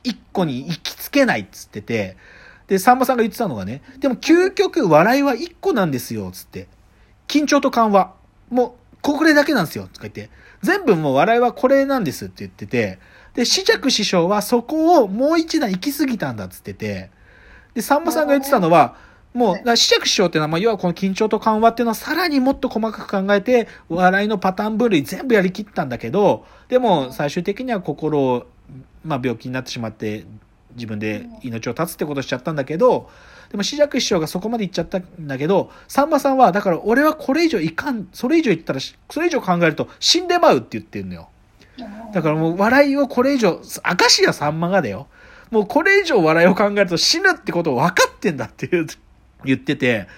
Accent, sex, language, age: native, male, Japanese, 40-59